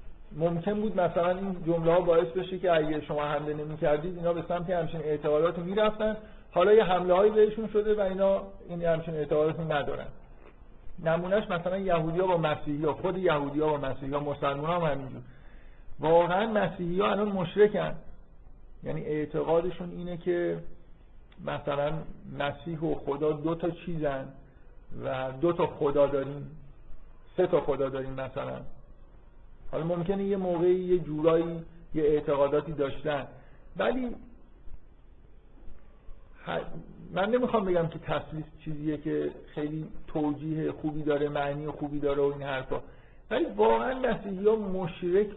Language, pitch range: Persian, 145-180 Hz